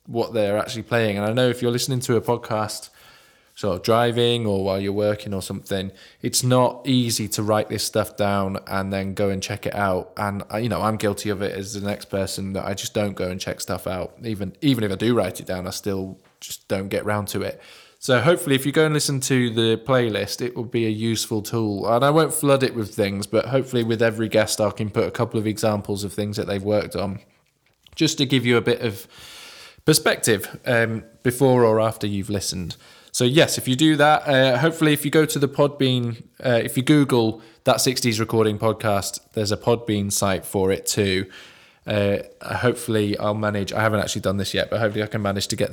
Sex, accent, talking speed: male, British, 230 wpm